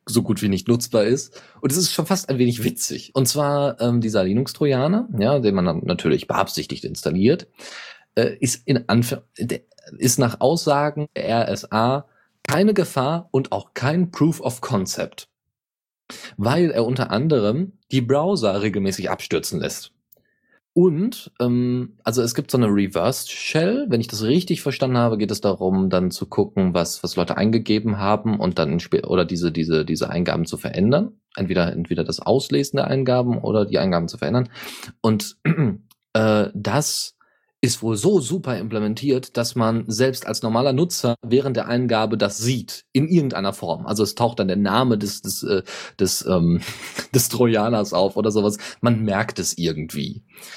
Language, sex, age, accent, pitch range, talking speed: German, male, 30-49, German, 105-140 Hz, 170 wpm